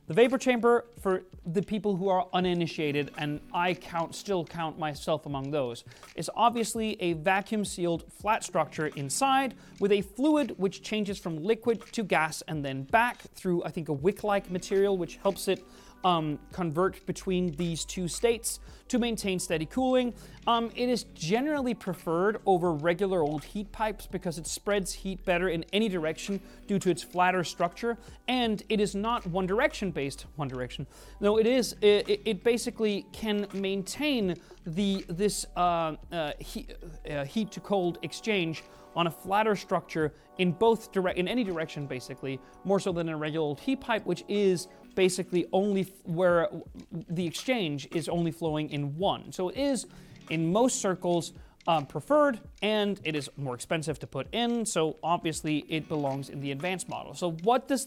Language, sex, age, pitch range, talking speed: English, male, 30-49, 160-210 Hz, 170 wpm